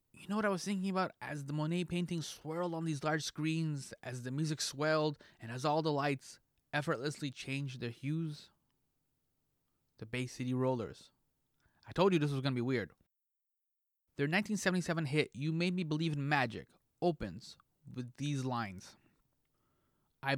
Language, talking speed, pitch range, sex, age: English, 165 wpm, 125-165 Hz, male, 20-39